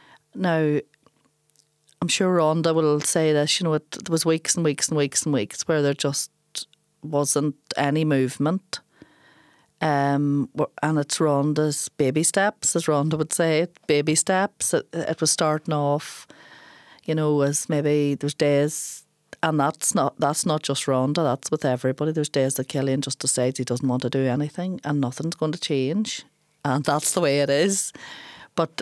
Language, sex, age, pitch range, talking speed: English, female, 40-59, 140-160 Hz, 175 wpm